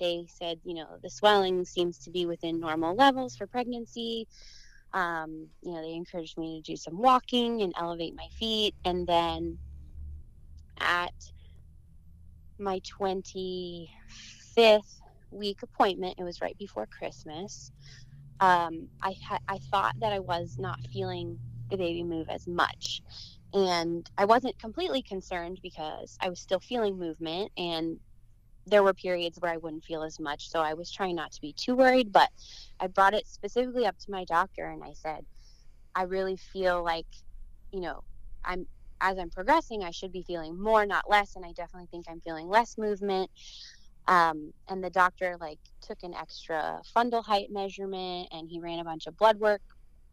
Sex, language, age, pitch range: female, English, 20-39, 160-195 Hz